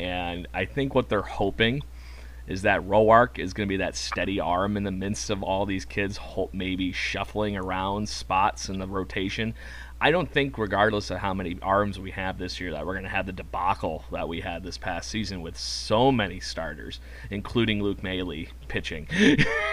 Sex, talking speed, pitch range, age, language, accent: male, 190 wpm, 95-110 Hz, 30-49, English, American